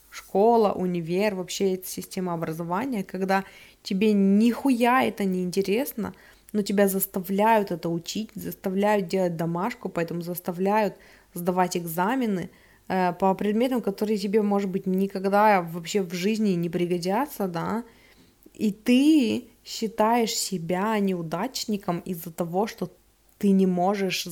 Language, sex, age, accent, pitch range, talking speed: Russian, female, 20-39, native, 175-215 Hz, 120 wpm